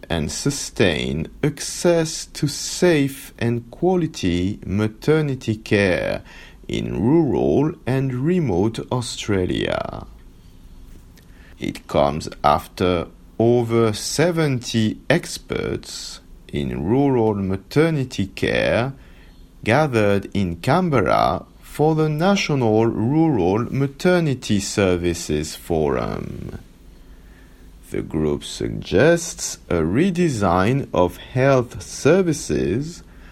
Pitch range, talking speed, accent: 90-145 Hz, 75 wpm, French